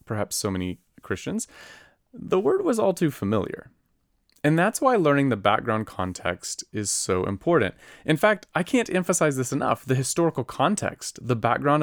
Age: 30-49